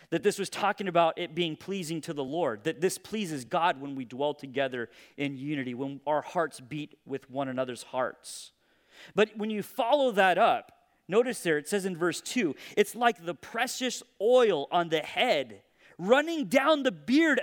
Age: 30-49